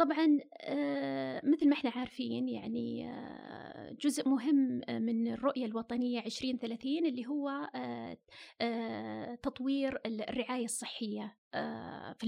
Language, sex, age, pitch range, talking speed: Arabic, female, 30-49, 240-295 Hz, 95 wpm